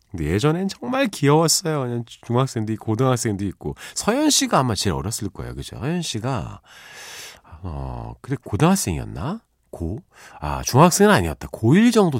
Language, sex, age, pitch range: Korean, male, 40-59, 95-145 Hz